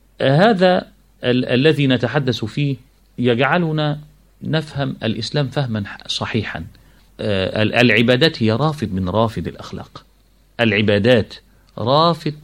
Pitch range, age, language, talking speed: 100-140 Hz, 40-59, Arabic, 90 wpm